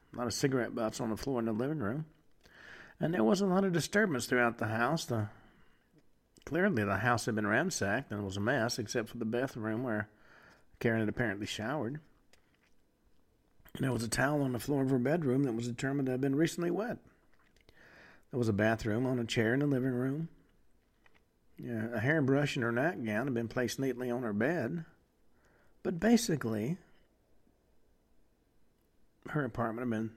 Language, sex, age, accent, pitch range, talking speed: English, male, 50-69, American, 115-140 Hz, 175 wpm